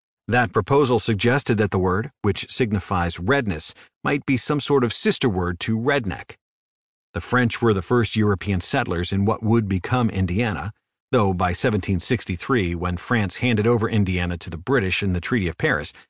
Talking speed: 170 wpm